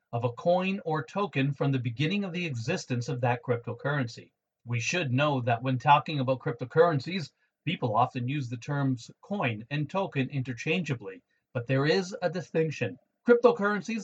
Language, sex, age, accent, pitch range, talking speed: English, male, 40-59, American, 125-165 Hz, 160 wpm